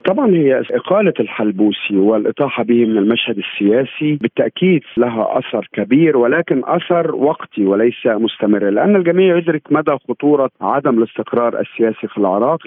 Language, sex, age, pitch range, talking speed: Arabic, male, 50-69, 115-155 Hz, 135 wpm